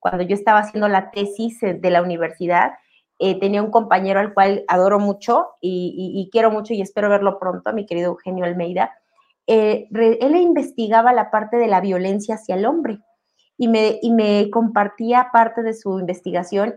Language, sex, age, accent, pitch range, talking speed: Spanish, female, 30-49, Mexican, 190-235 Hz, 175 wpm